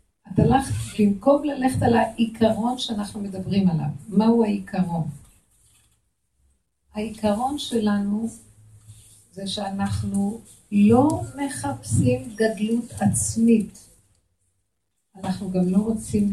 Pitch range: 155-210 Hz